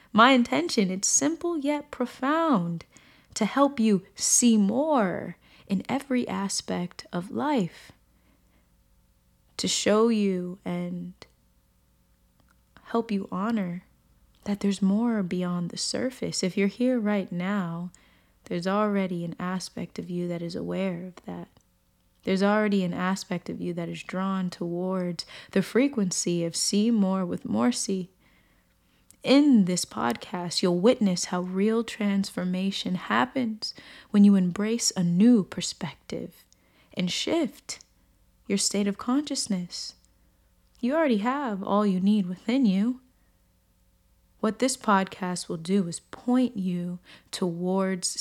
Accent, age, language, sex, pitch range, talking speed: American, 20-39, English, female, 175-225 Hz, 125 wpm